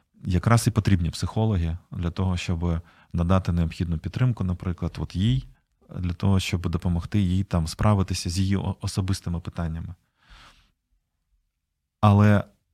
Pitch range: 90-105 Hz